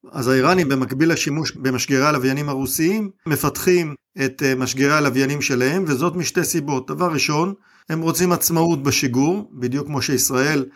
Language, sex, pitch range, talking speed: Hebrew, male, 130-160 Hz, 135 wpm